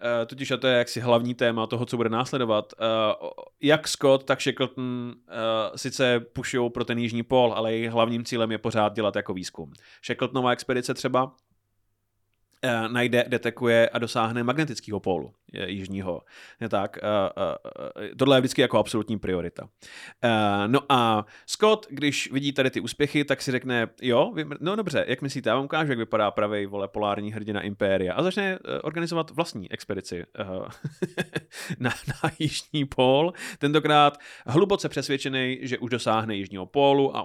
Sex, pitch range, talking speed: male, 110-135 Hz, 160 wpm